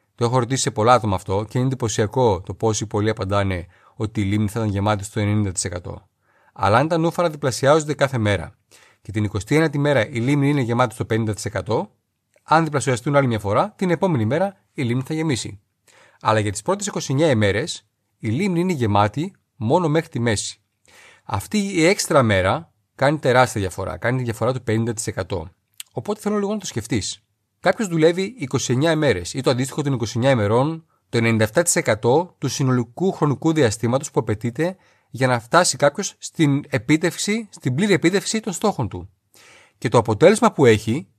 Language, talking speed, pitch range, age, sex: Greek, 170 wpm, 105-155 Hz, 30-49, male